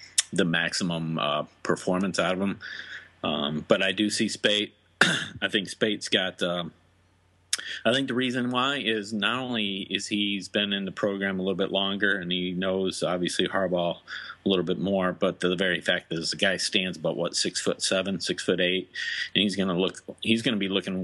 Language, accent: English, American